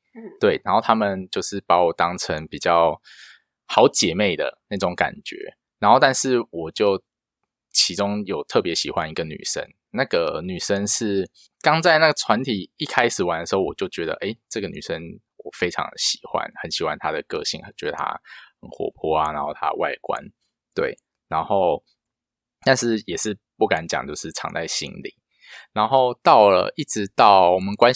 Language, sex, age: Chinese, male, 20-39